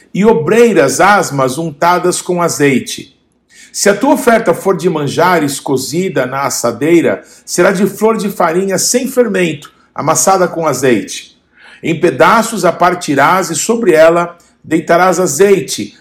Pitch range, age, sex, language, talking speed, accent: 165-210 Hz, 50-69, male, Portuguese, 130 wpm, Brazilian